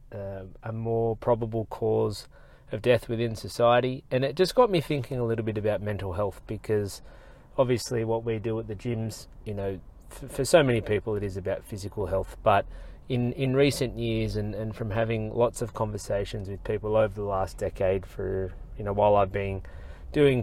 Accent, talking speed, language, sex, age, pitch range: Australian, 190 wpm, English, male, 30-49, 95-115 Hz